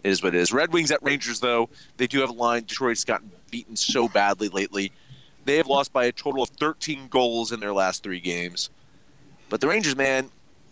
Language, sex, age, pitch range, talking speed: English, male, 30-49, 110-140 Hz, 220 wpm